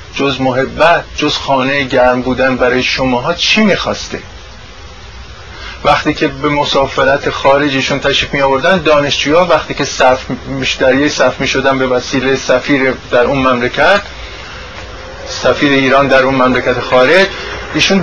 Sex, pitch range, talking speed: male, 125-155 Hz, 125 wpm